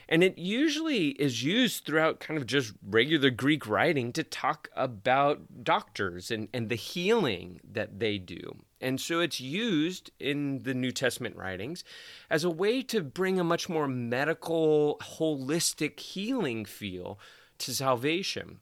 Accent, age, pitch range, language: American, 30-49, 120-165 Hz, English